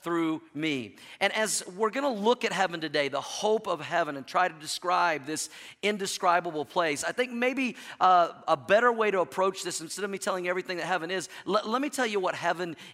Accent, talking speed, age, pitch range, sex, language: American, 225 wpm, 40-59, 165-195 Hz, male, English